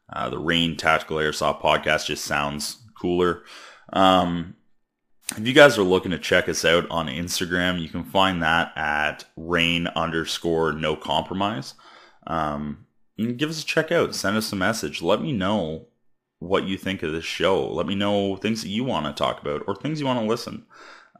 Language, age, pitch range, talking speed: English, 20-39, 80-95 Hz, 185 wpm